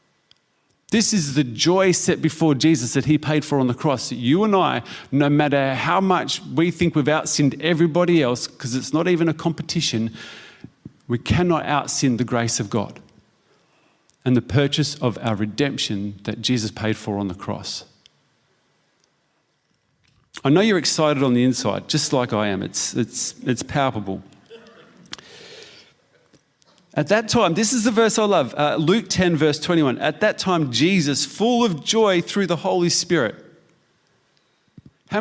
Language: English